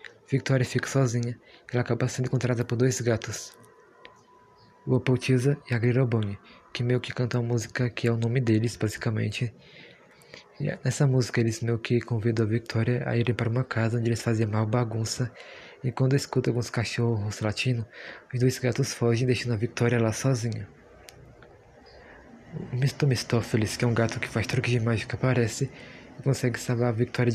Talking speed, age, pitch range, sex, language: 170 wpm, 20-39, 115-125 Hz, male, Portuguese